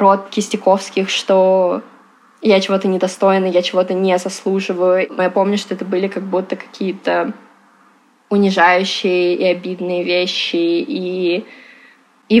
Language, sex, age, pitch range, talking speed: Russian, female, 20-39, 180-210 Hz, 115 wpm